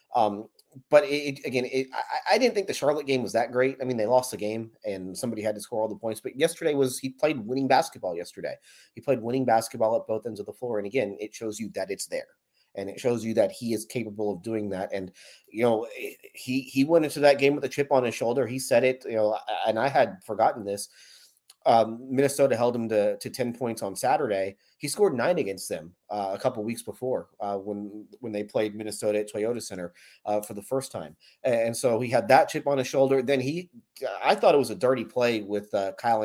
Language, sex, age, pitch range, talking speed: English, male, 30-49, 105-130 Hz, 245 wpm